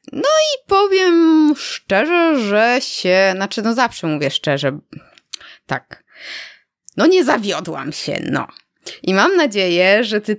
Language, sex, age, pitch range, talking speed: Polish, female, 20-39, 155-215 Hz, 125 wpm